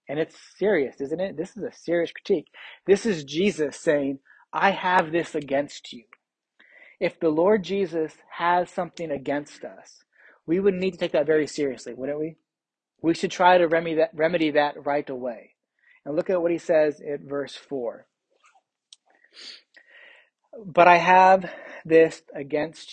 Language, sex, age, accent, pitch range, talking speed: English, male, 30-49, American, 140-175 Hz, 155 wpm